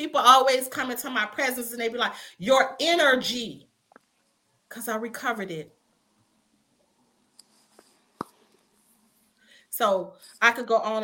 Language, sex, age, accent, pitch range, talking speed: English, female, 40-59, American, 175-225 Hz, 115 wpm